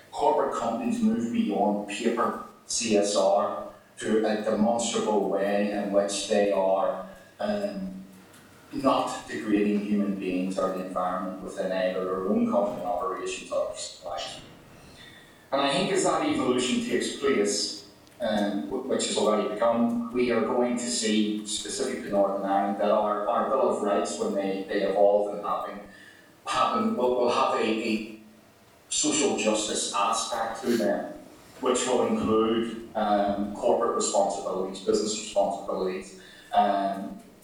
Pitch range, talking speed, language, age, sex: 100-115 Hz, 130 wpm, English, 40-59, male